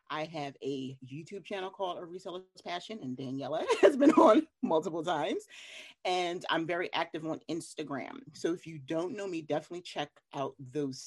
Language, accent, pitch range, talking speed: English, American, 130-165 Hz, 175 wpm